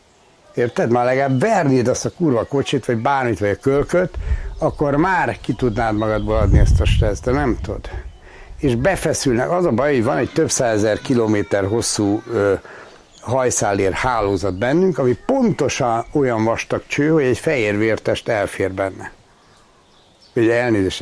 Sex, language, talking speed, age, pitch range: male, Hungarian, 150 wpm, 60-79, 105-135 Hz